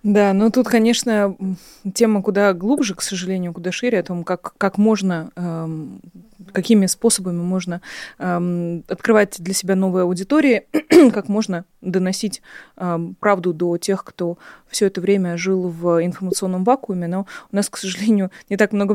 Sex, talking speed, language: female, 155 wpm, Russian